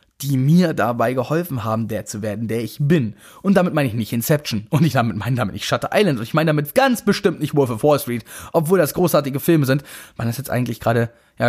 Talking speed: 245 wpm